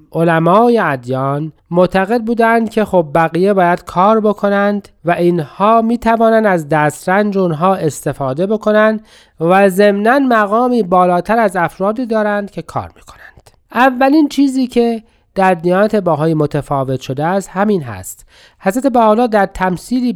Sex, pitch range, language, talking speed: male, 145-205 Hz, Persian, 130 wpm